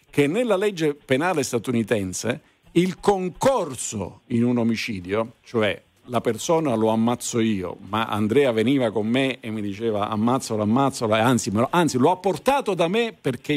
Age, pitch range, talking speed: 50-69, 110-165 Hz, 150 wpm